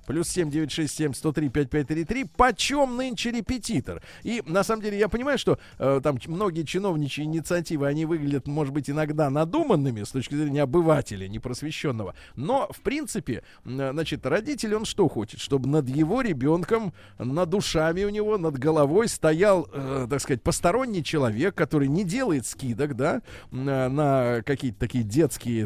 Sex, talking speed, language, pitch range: male, 165 wpm, Russian, 135-200 Hz